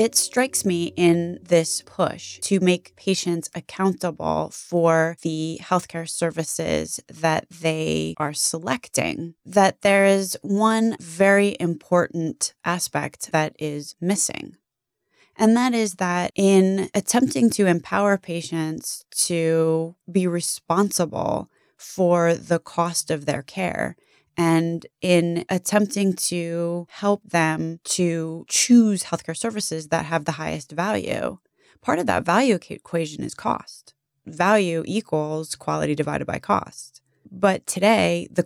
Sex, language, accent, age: female, English, American, 20-39